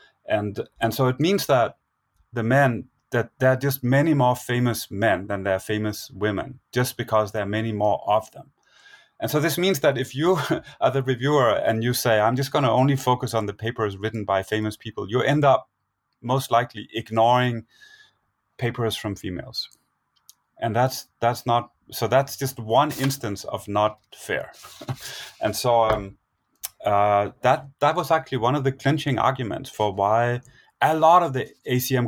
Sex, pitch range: male, 110-135 Hz